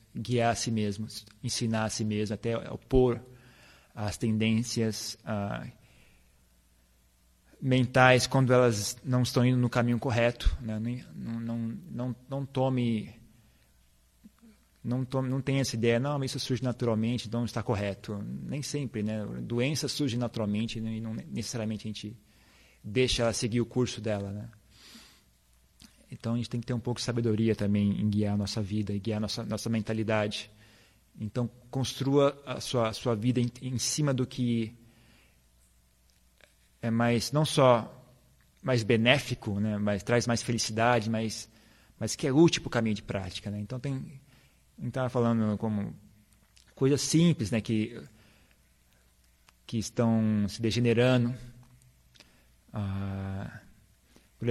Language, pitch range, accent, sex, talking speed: Portuguese, 105-125 Hz, Brazilian, male, 145 wpm